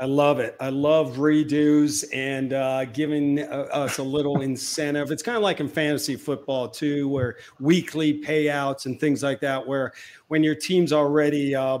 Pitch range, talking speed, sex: 140-165 Hz, 180 wpm, male